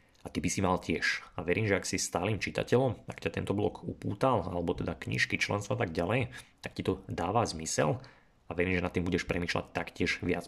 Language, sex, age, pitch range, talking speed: Slovak, male, 30-49, 90-125 Hz, 220 wpm